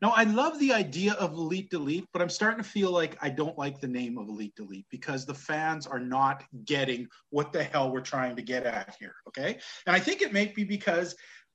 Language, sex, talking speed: English, male, 235 wpm